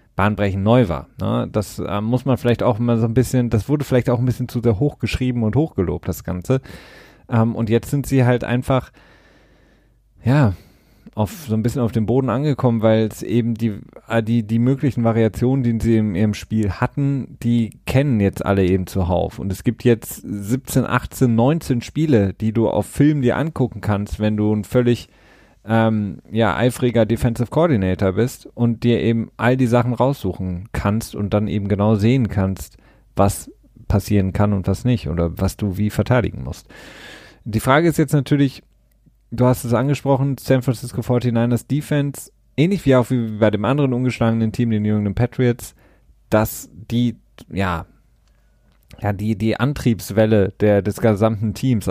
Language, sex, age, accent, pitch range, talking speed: German, male, 30-49, German, 105-125 Hz, 170 wpm